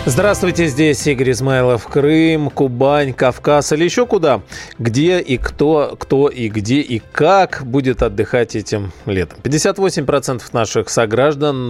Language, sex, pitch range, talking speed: Russian, male, 110-150 Hz, 130 wpm